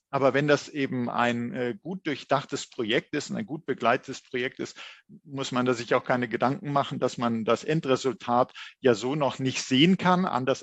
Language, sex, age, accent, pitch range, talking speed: English, male, 50-69, German, 120-155 Hz, 200 wpm